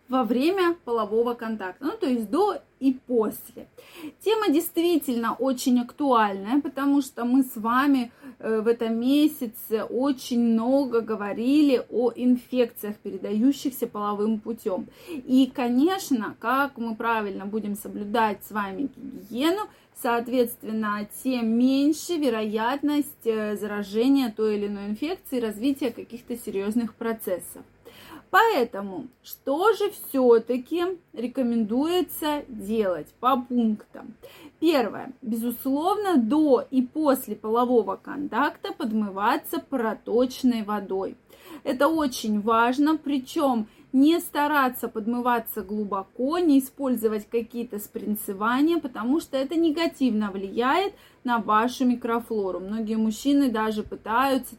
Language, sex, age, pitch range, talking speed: Russian, female, 20-39, 225-280 Hz, 105 wpm